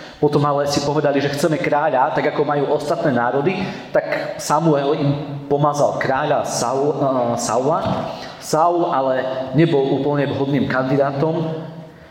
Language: Slovak